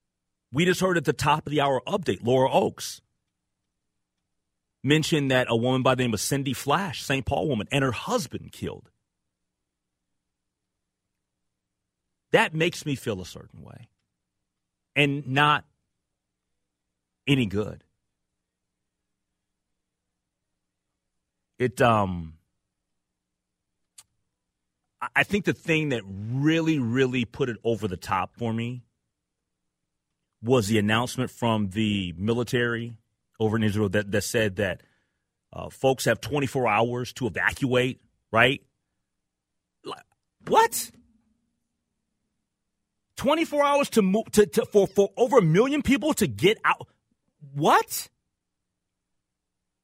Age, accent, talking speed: 40-59, American, 110 wpm